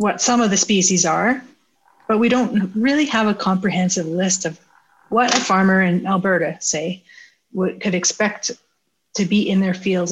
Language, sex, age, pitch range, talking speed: English, female, 30-49, 180-210 Hz, 165 wpm